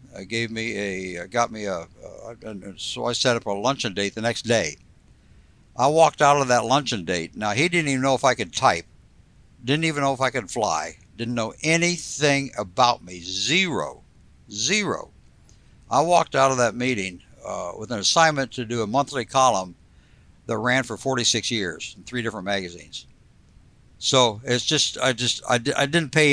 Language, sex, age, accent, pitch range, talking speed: English, male, 60-79, American, 105-135 Hz, 185 wpm